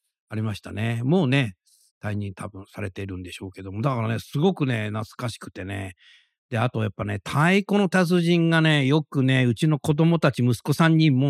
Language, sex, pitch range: Japanese, male, 105-145 Hz